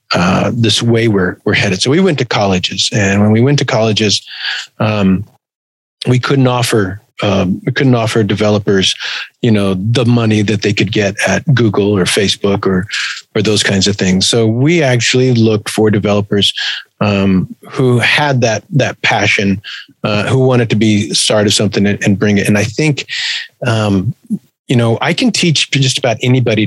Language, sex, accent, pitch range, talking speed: English, male, American, 105-130 Hz, 180 wpm